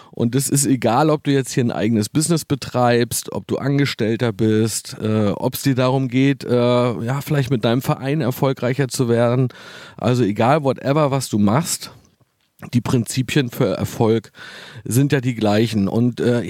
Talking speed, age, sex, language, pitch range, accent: 170 wpm, 40-59, male, German, 120-145 Hz, German